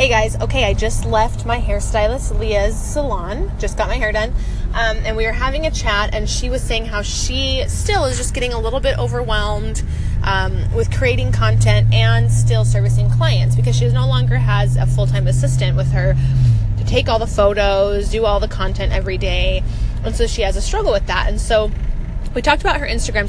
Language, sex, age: English, female, 20-39